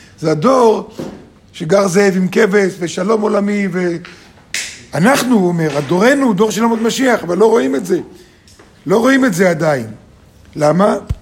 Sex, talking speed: male, 150 wpm